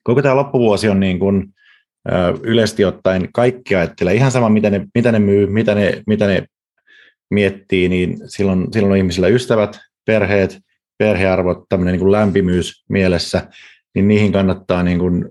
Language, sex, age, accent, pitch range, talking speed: Finnish, male, 30-49, native, 90-110 Hz, 155 wpm